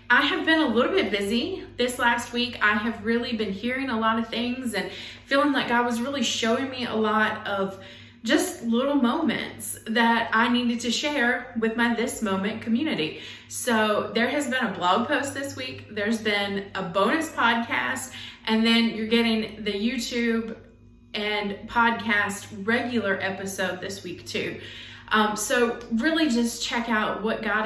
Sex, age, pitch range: female, 20-39, 205-240 Hz